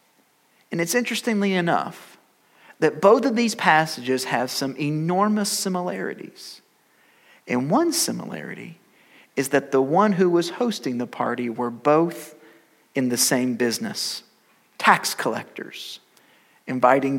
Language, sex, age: English, male, 40-59